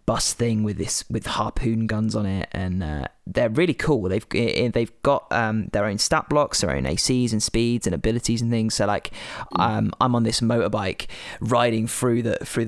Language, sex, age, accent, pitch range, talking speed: English, male, 20-39, British, 105-125 Hz, 200 wpm